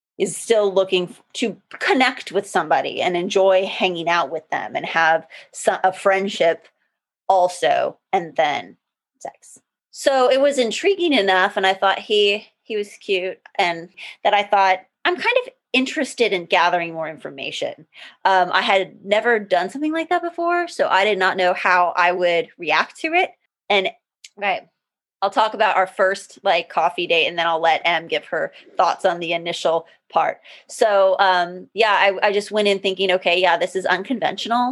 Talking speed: 175 wpm